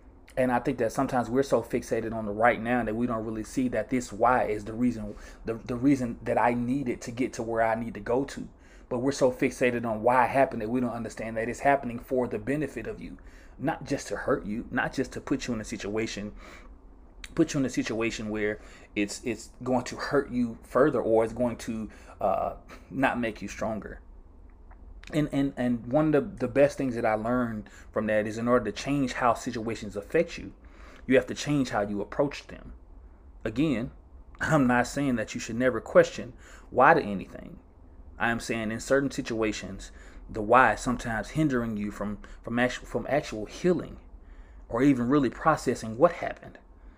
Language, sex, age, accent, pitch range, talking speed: English, male, 30-49, American, 105-130 Hz, 205 wpm